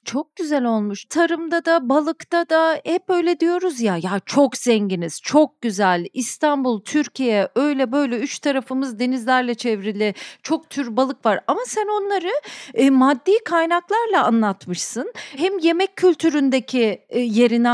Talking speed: 135 wpm